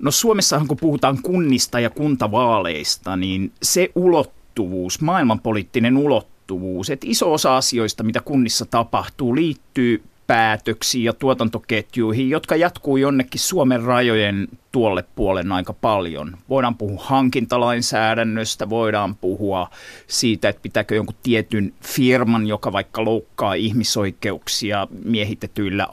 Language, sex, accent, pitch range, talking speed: Finnish, male, native, 105-130 Hz, 110 wpm